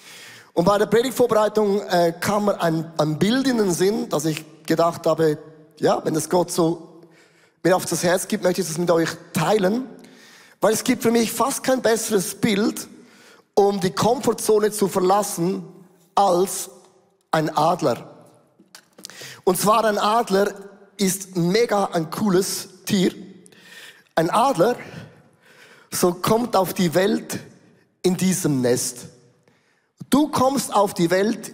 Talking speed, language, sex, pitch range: 140 wpm, German, male, 170-230 Hz